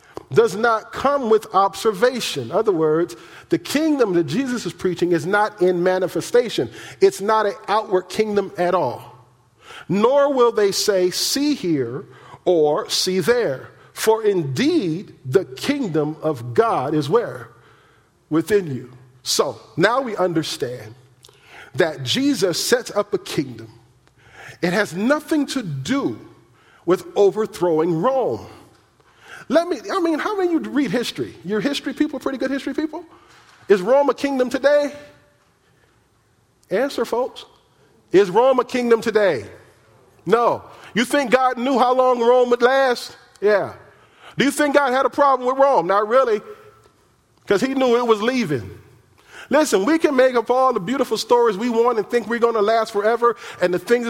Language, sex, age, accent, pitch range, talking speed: English, male, 40-59, American, 185-275 Hz, 155 wpm